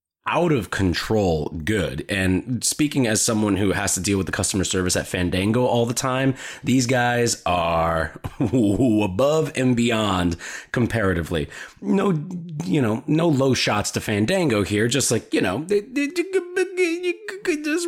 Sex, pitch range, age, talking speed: male, 100-135 Hz, 30-49, 145 wpm